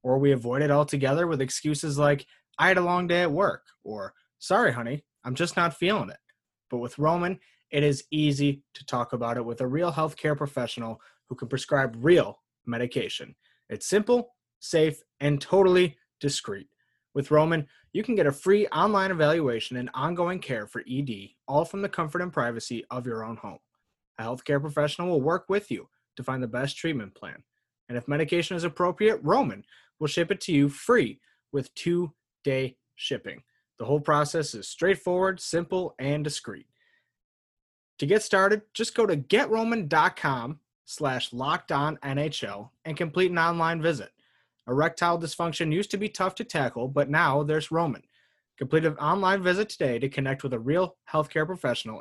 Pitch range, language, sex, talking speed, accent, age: 130-175 Hz, English, male, 170 wpm, American, 20-39